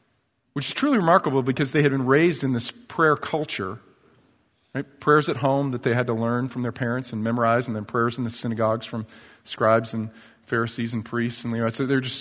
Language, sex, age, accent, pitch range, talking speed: English, male, 40-59, American, 120-155 Hz, 210 wpm